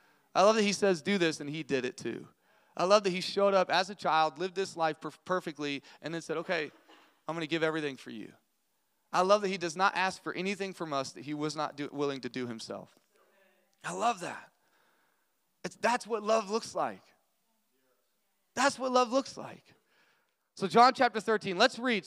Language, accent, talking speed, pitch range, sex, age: English, American, 200 wpm, 175-220 Hz, male, 30-49